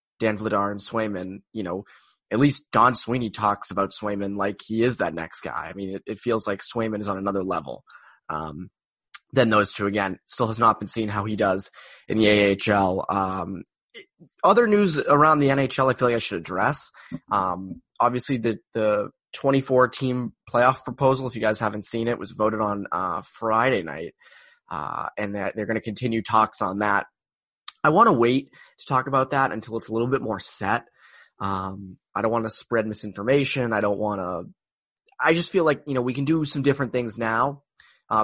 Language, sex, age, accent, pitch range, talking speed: English, male, 20-39, American, 105-135 Hz, 205 wpm